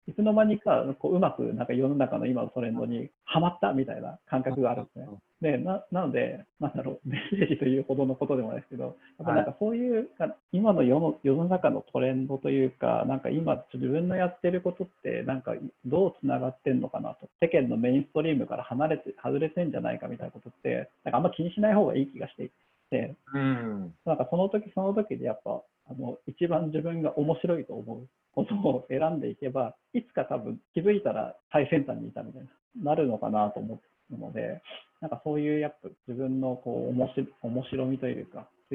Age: 40-59